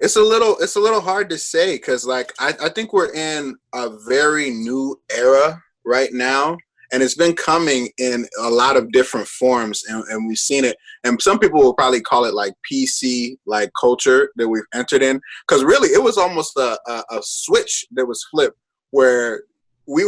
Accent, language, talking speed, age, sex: American, English, 195 wpm, 20-39, male